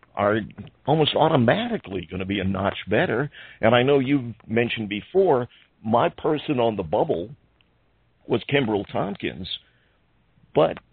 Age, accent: 50-69, American